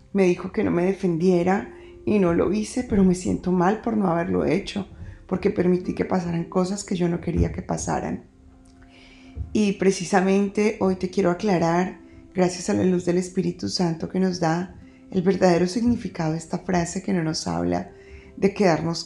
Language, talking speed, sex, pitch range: Spanish, 180 wpm, female, 165-190 Hz